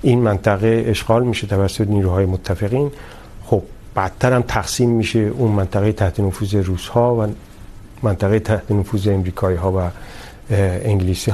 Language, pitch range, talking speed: Urdu, 100-130 Hz, 140 wpm